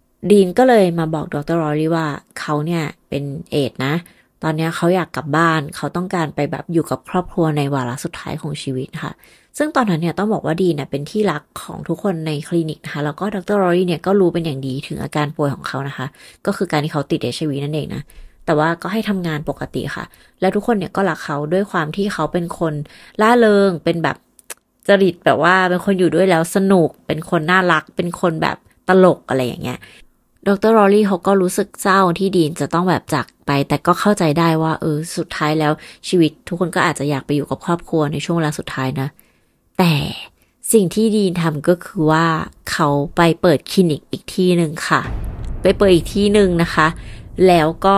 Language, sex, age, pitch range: Thai, female, 30-49, 150-185 Hz